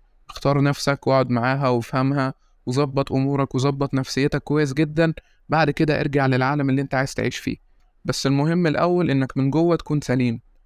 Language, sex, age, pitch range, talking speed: Arabic, male, 20-39, 130-150 Hz, 160 wpm